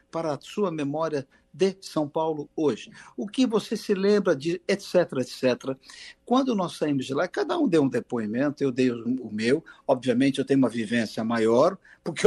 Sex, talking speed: male, 180 wpm